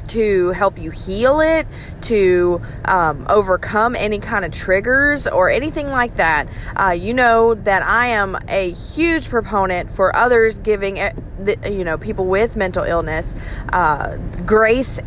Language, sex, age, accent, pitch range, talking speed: English, female, 30-49, American, 180-230 Hz, 145 wpm